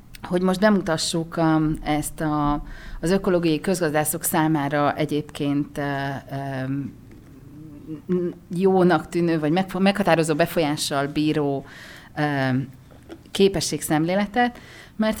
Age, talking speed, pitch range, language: 40-59, 70 wpm, 145-185 Hz, Hungarian